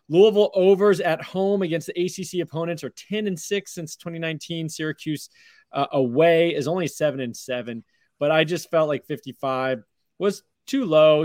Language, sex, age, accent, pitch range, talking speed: English, male, 30-49, American, 130-180 Hz, 165 wpm